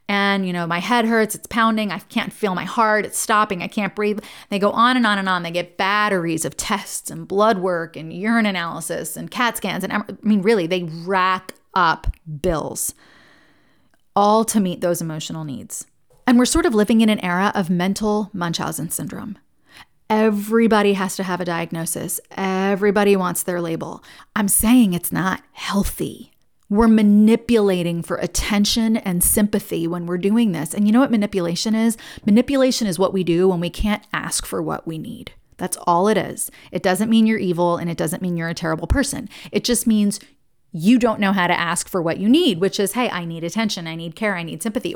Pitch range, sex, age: 175-215 Hz, female, 30-49